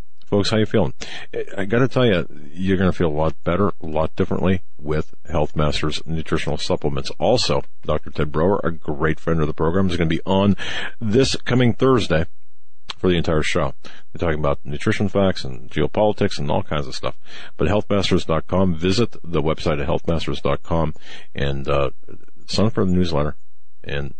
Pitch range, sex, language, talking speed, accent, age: 75-95 Hz, male, English, 180 wpm, American, 50-69